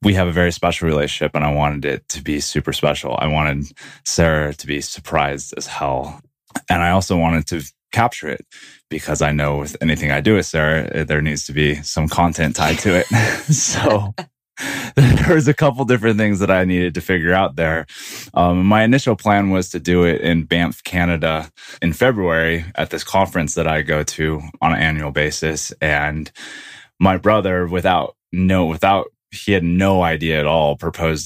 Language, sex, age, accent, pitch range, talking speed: English, male, 20-39, American, 75-95 Hz, 185 wpm